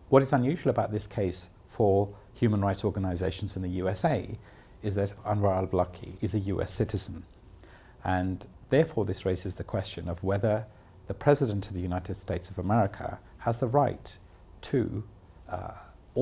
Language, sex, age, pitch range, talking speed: English, male, 50-69, 90-115 Hz, 155 wpm